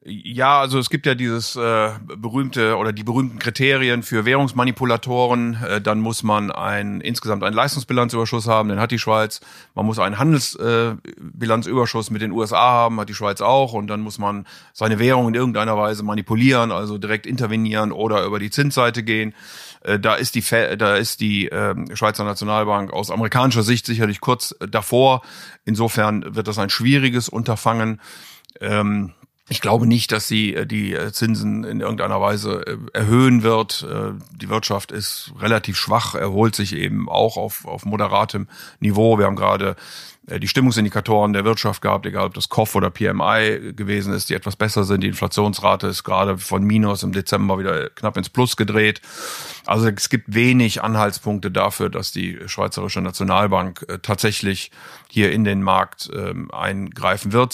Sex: male